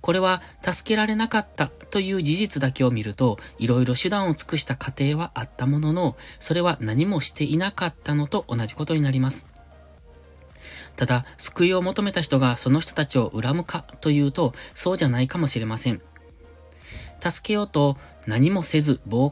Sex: male